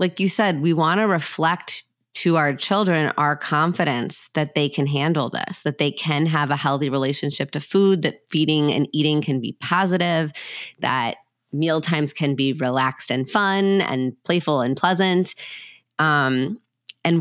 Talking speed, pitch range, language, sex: 160 wpm, 140-170 Hz, English, female